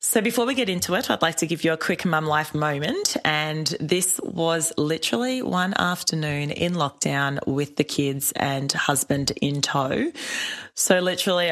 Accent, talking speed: Australian, 170 wpm